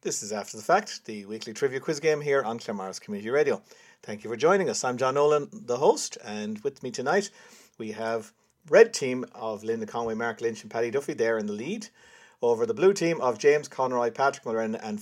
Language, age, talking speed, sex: English, 50-69, 220 wpm, male